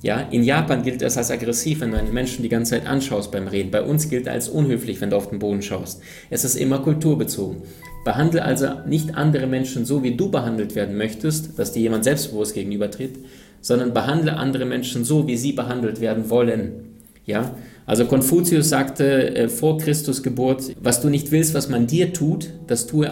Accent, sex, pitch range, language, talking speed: German, male, 115-150 Hz, German, 200 wpm